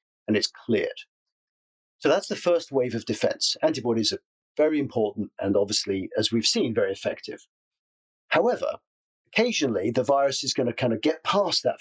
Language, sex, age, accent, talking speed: English, male, 50-69, British, 170 wpm